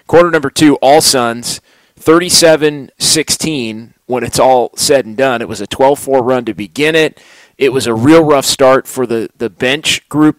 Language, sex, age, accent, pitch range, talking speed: English, male, 30-49, American, 120-145 Hz, 180 wpm